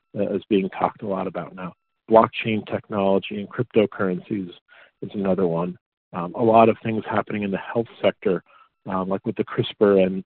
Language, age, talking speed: English, 40-59, 175 wpm